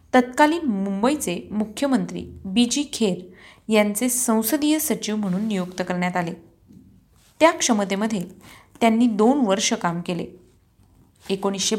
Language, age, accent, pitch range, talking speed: Marathi, 30-49, native, 185-240 Hz, 105 wpm